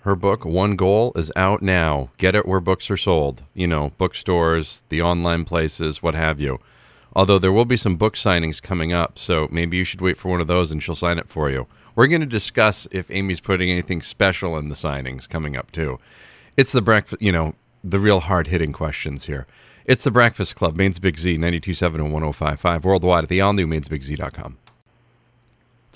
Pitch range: 75-100 Hz